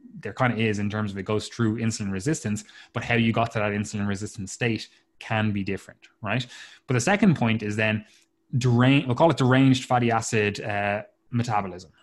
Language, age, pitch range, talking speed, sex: English, 20-39, 110-130 Hz, 200 wpm, male